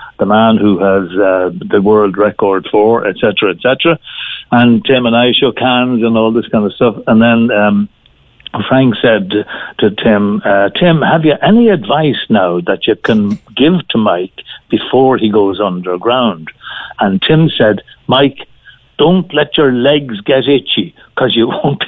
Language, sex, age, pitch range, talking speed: English, male, 60-79, 110-165 Hz, 175 wpm